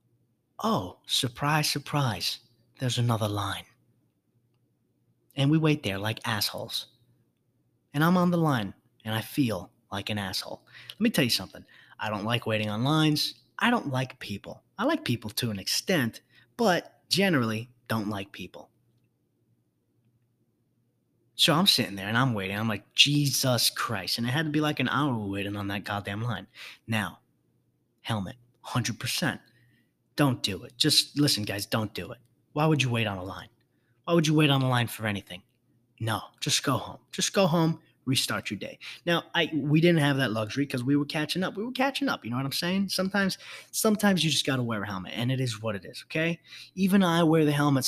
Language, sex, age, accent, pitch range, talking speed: English, male, 30-49, American, 110-155 Hz, 190 wpm